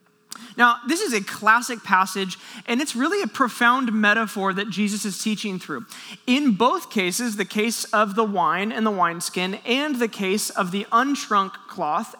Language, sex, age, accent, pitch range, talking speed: English, male, 20-39, American, 205-260 Hz, 170 wpm